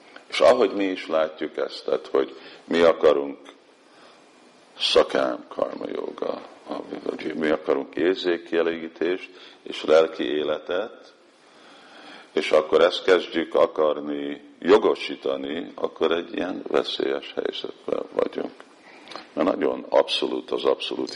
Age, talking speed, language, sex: 50-69, 100 wpm, Hungarian, male